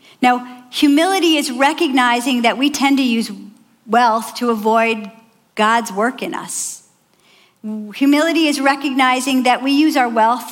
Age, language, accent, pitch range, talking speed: 50-69, English, American, 215-265 Hz, 135 wpm